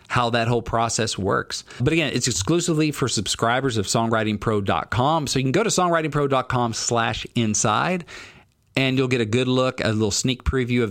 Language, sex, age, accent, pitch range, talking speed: English, male, 40-59, American, 110-135 Hz, 175 wpm